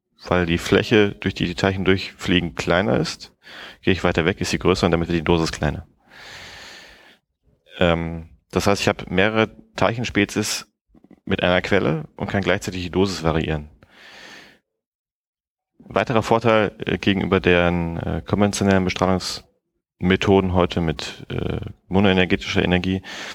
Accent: German